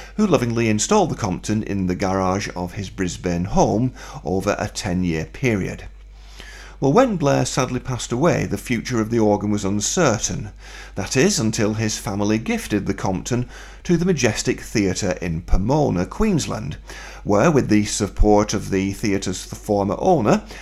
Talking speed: 150 wpm